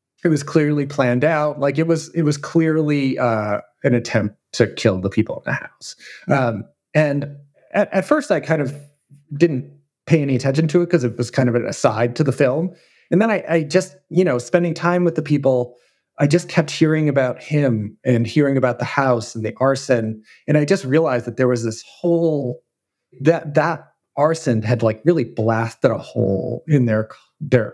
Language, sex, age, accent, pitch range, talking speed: English, male, 30-49, American, 120-155 Hz, 200 wpm